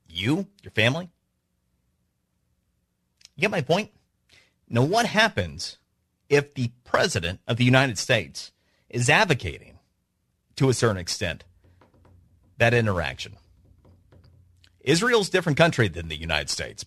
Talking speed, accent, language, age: 115 wpm, American, English, 40-59